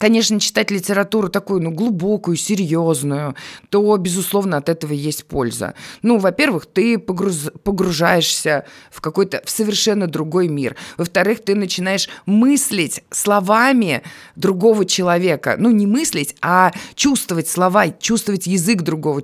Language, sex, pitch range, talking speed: Russian, female, 160-210 Hz, 125 wpm